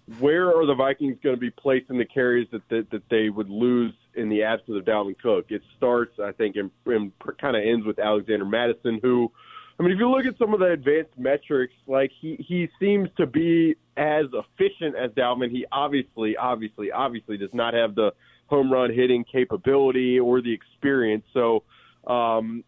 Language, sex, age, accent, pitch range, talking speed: English, male, 20-39, American, 120-140 Hz, 195 wpm